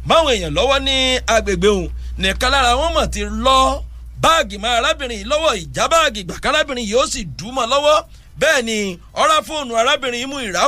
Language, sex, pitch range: English, male, 180-265 Hz